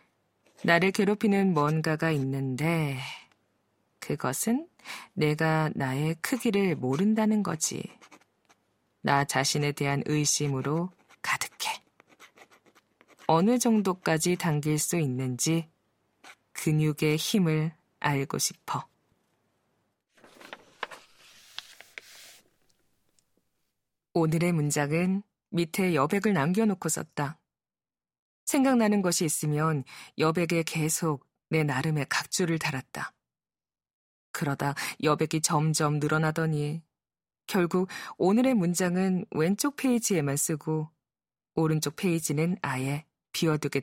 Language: Korean